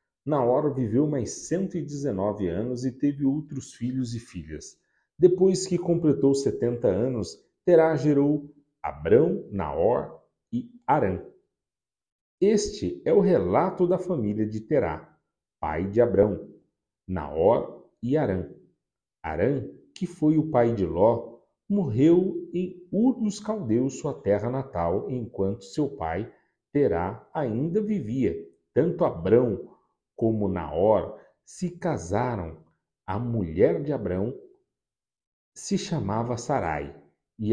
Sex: male